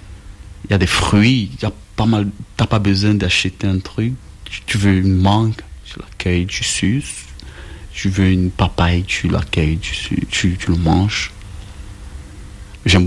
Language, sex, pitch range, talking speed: French, male, 85-100 Hz, 155 wpm